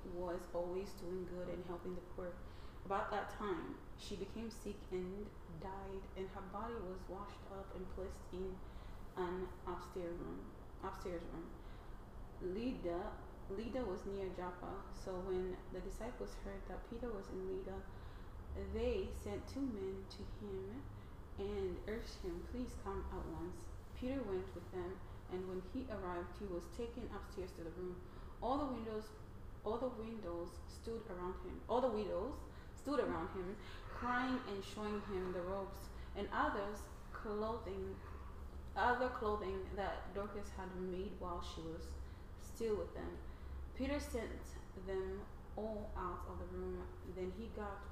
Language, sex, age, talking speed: English, female, 30-49, 150 wpm